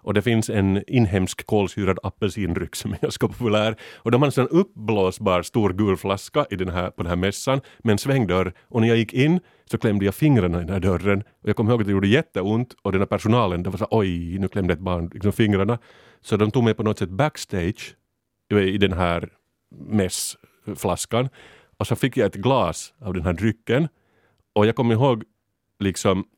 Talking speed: 205 wpm